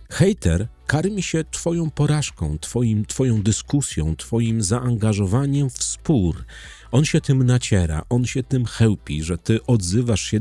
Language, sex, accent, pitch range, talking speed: Polish, male, native, 95-145 Hz, 135 wpm